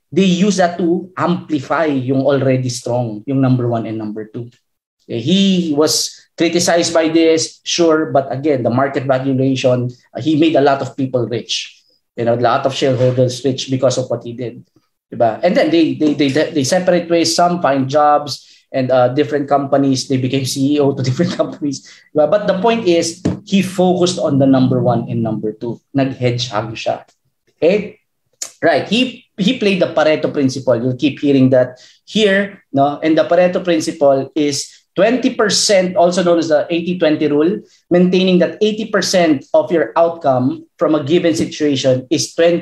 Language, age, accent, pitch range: Filipino, 20-39, native, 135-180 Hz